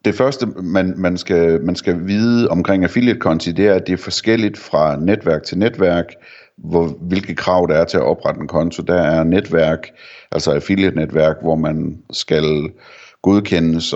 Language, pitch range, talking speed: Danish, 80-95 Hz, 170 wpm